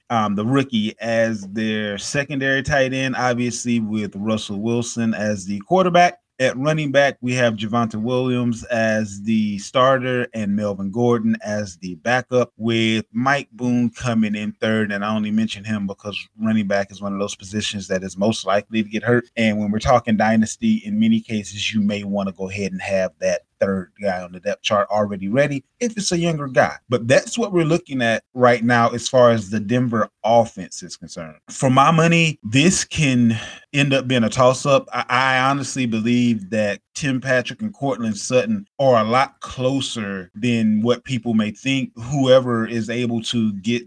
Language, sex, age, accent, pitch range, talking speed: English, male, 20-39, American, 110-130 Hz, 190 wpm